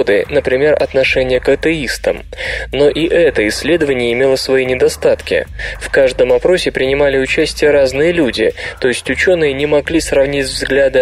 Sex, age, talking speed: male, 20-39, 135 wpm